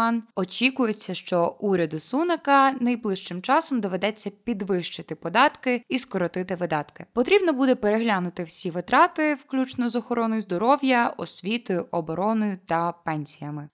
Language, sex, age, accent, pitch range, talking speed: Ukrainian, female, 20-39, native, 180-245 Hz, 110 wpm